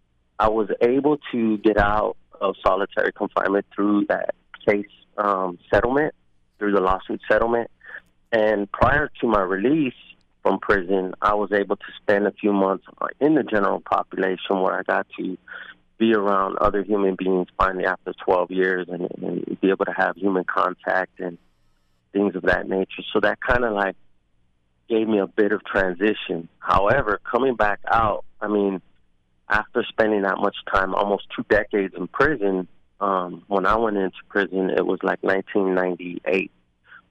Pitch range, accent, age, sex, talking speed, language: 90-105 Hz, American, 30-49, male, 160 wpm, English